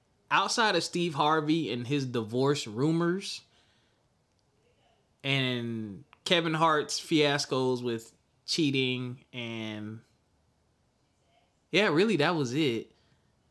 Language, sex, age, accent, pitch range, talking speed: English, male, 20-39, American, 130-180 Hz, 90 wpm